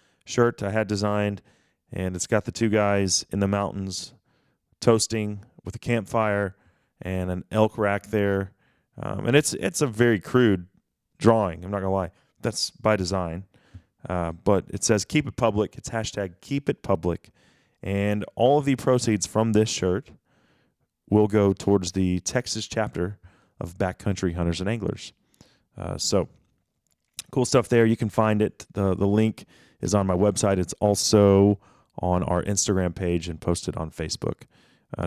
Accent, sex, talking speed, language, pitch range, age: American, male, 165 wpm, English, 95-120 Hz, 30-49